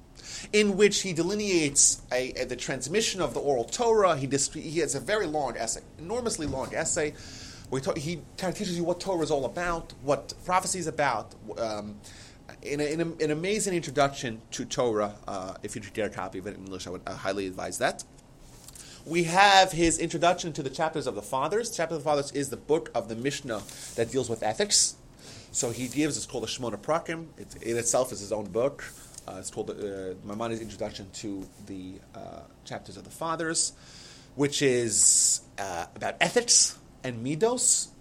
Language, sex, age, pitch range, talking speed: English, male, 30-49, 115-160 Hz, 195 wpm